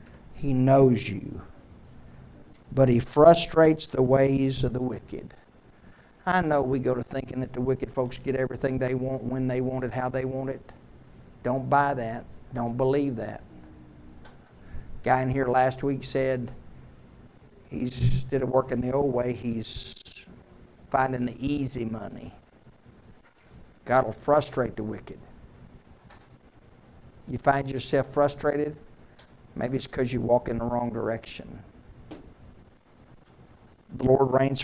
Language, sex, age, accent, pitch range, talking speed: English, male, 60-79, American, 120-135 Hz, 135 wpm